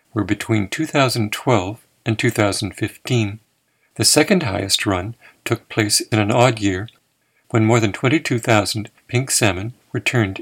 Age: 50-69